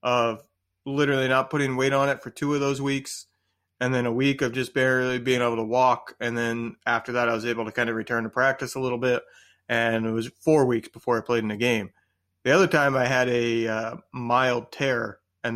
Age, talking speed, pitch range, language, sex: 30-49, 230 wpm, 115-145 Hz, English, male